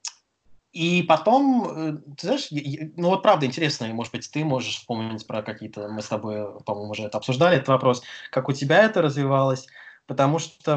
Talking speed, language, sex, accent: 175 wpm, Russian, male, native